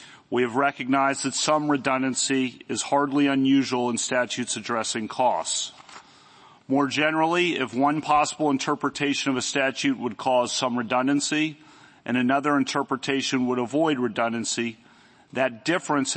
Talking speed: 125 wpm